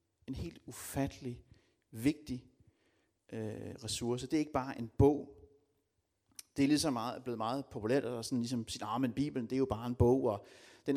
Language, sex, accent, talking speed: Danish, male, native, 185 wpm